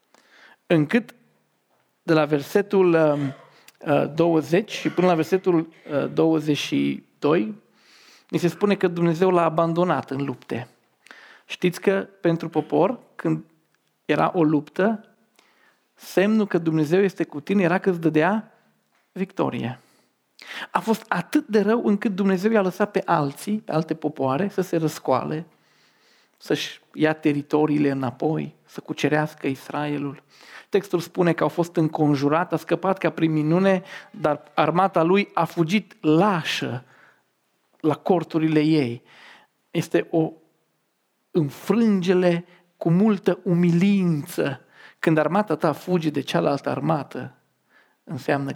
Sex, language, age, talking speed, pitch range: male, Romanian, 40-59, 120 wpm, 155-195 Hz